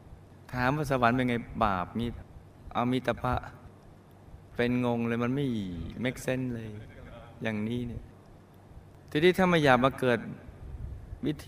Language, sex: Thai, male